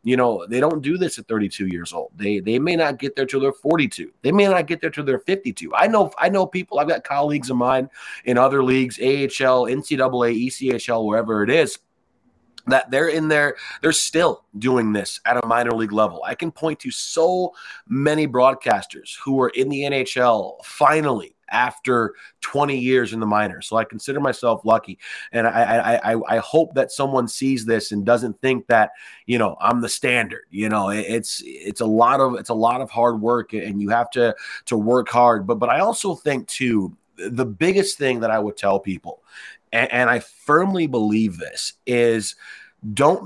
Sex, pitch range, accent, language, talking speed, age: male, 115-140 Hz, American, English, 200 wpm, 30-49